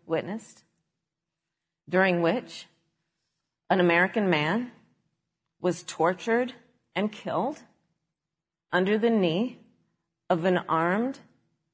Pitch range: 165-220 Hz